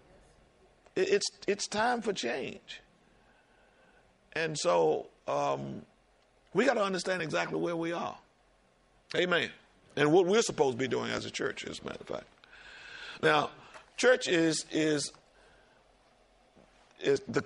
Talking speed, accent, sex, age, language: 130 wpm, American, male, 50-69, English